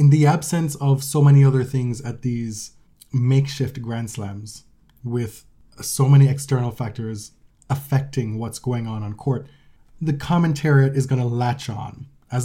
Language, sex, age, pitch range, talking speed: English, male, 20-39, 120-140 Hz, 155 wpm